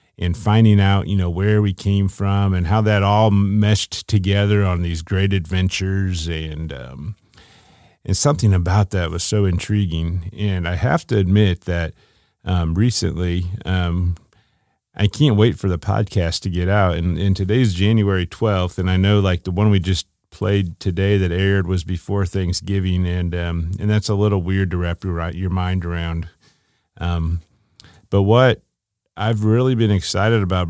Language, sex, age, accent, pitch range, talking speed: English, male, 40-59, American, 90-105 Hz, 170 wpm